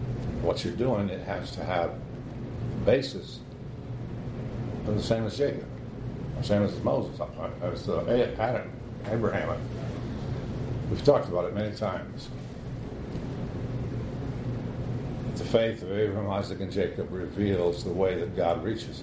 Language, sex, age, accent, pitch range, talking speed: English, male, 60-79, American, 105-125 Hz, 125 wpm